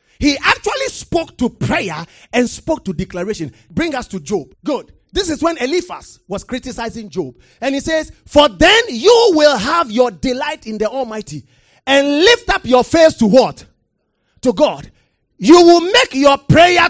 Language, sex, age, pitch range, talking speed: English, male, 30-49, 185-295 Hz, 170 wpm